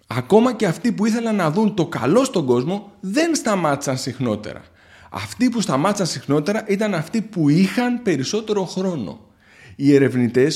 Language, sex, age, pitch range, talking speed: Greek, male, 30-49, 120-200 Hz, 150 wpm